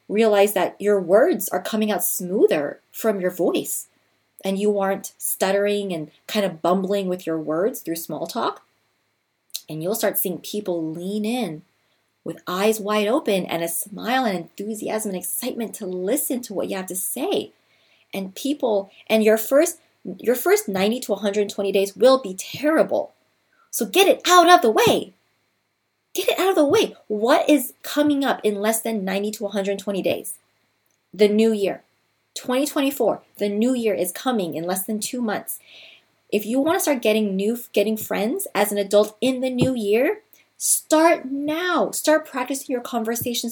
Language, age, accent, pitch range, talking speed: English, 30-49, American, 200-260 Hz, 170 wpm